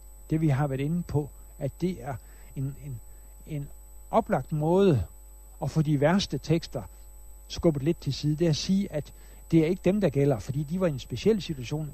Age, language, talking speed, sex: 60-79, Danish, 205 wpm, male